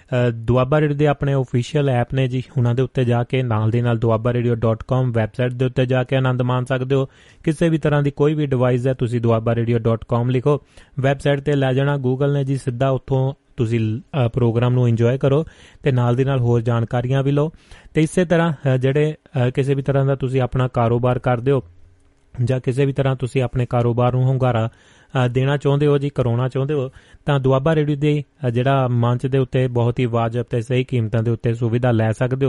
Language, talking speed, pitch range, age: Punjabi, 165 wpm, 120-140 Hz, 30-49